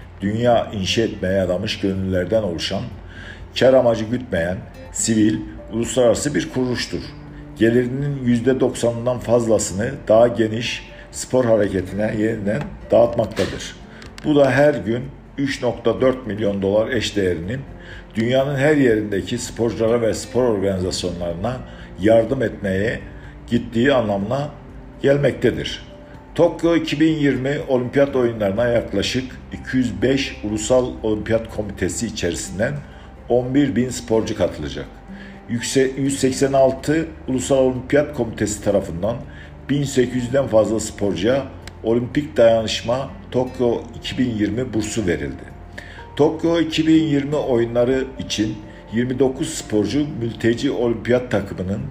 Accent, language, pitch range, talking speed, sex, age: native, Turkish, 100-130 Hz, 90 wpm, male, 50-69